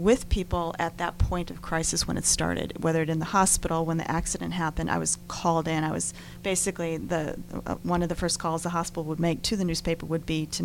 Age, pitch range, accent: 40-59, 165-185 Hz, American